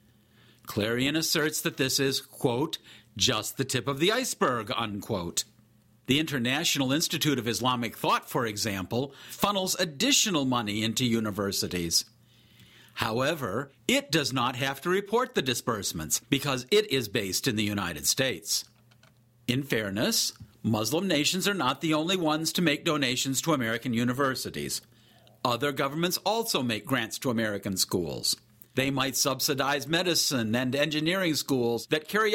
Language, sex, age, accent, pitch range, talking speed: English, male, 50-69, American, 115-170 Hz, 140 wpm